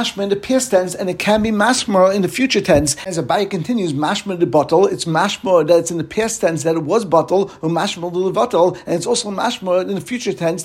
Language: English